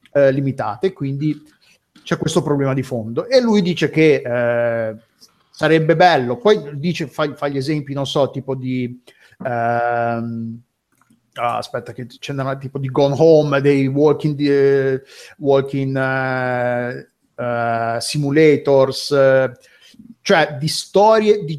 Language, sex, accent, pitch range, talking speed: Italian, male, native, 130-170 Hz, 125 wpm